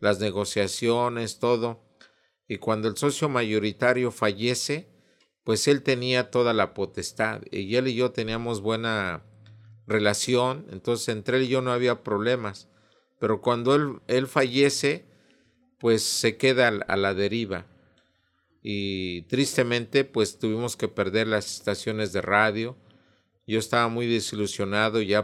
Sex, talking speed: male, 135 wpm